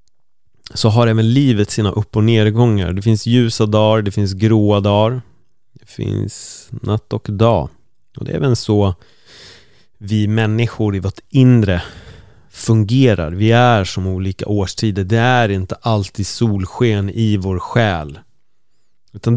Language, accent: Swedish, native